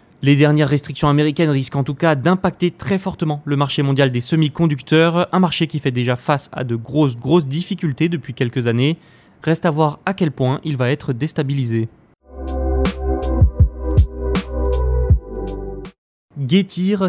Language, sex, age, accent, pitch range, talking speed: French, male, 20-39, French, 135-175 Hz, 145 wpm